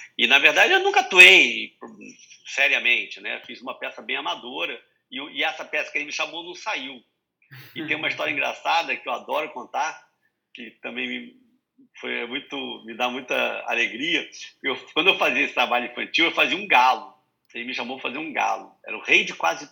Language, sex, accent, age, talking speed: Portuguese, male, Brazilian, 50-69, 185 wpm